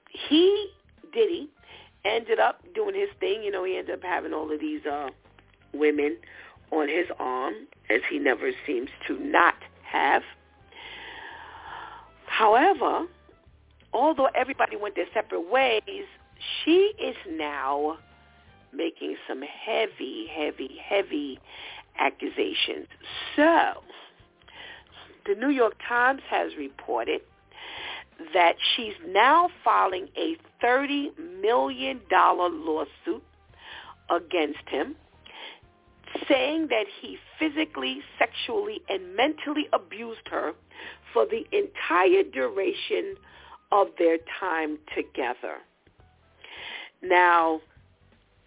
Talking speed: 100 wpm